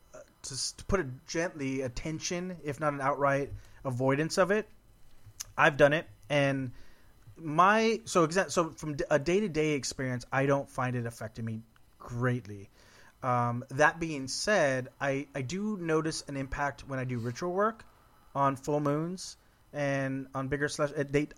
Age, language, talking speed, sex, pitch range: 30-49, English, 150 wpm, male, 125-160 Hz